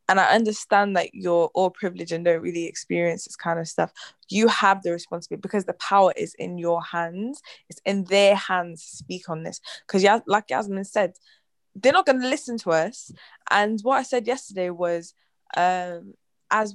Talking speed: 190 wpm